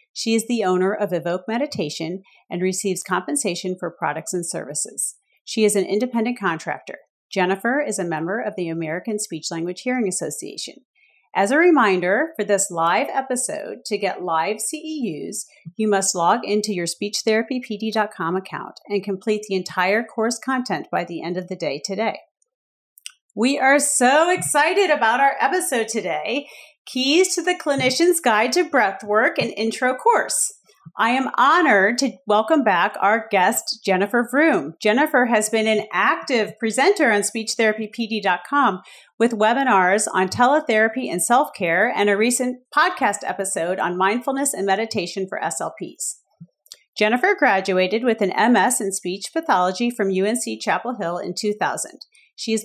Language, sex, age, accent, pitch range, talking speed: English, female, 40-59, American, 190-255 Hz, 150 wpm